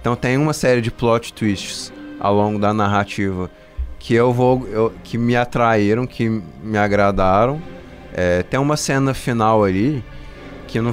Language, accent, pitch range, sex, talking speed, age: Portuguese, Brazilian, 95-130 Hz, male, 155 wpm, 20-39